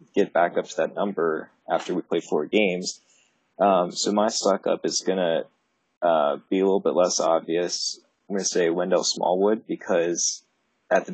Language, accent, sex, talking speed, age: English, American, male, 190 wpm, 20-39